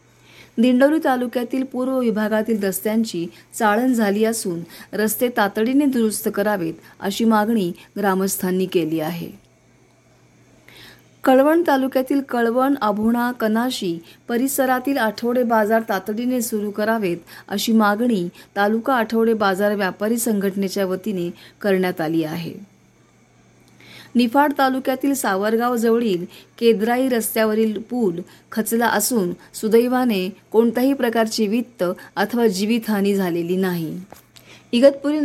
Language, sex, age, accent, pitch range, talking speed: Marathi, female, 30-49, native, 195-245 Hz, 95 wpm